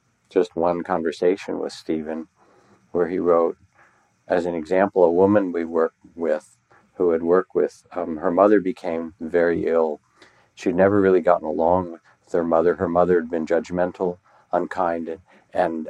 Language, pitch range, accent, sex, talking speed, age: English, 80-90 Hz, American, male, 160 wpm, 60-79